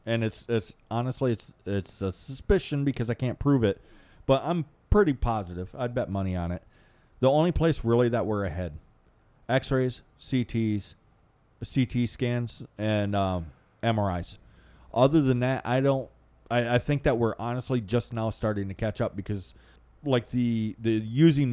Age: 30-49